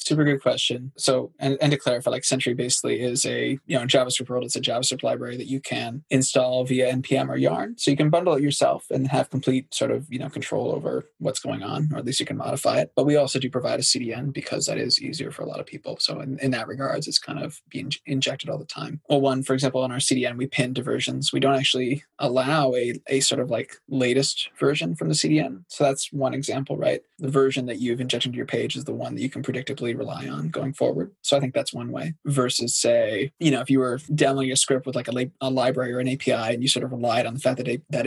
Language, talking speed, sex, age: English, 265 wpm, male, 20-39